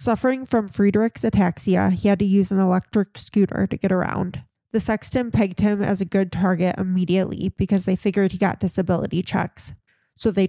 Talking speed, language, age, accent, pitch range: 185 wpm, English, 20-39, American, 180-205 Hz